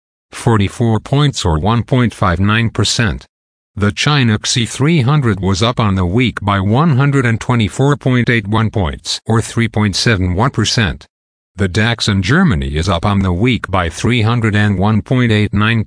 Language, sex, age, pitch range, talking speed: English, male, 50-69, 100-125 Hz, 105 wpm